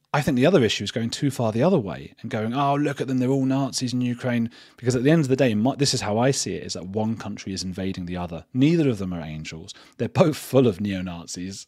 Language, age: English, 30-49